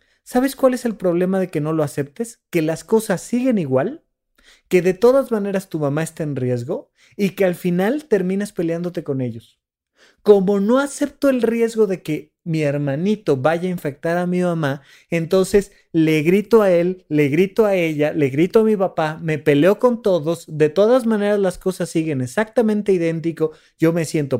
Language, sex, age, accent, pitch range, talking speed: Spanish, male, 30-49, Mexican, 145-190 Hz, 185 wpm